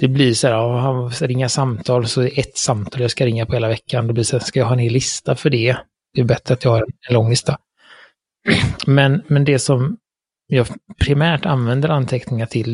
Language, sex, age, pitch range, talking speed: Swedish, male, 30-49, 120-140 Hz, 225 wpm